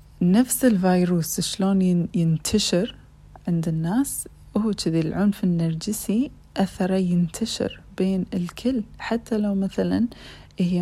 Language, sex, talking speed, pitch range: Arabic, female, 100 wpm, 165-195 Hz